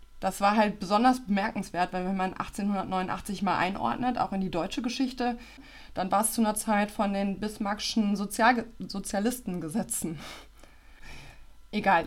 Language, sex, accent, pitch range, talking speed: German, female, German, 195-235 Hz, 135 wpm